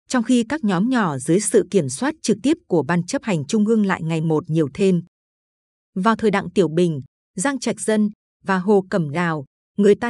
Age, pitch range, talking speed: 20-39, 180-230 Hz, 215 wpm